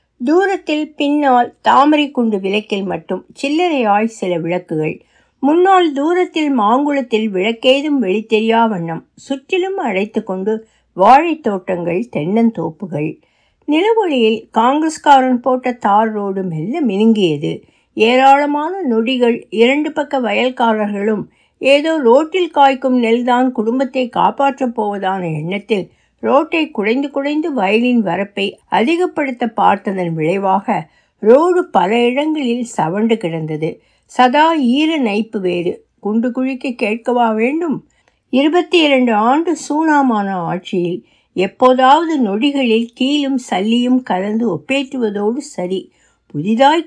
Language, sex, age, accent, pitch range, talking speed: Tamil, female, 60-79, native, 210-280 Hz, 95 wpm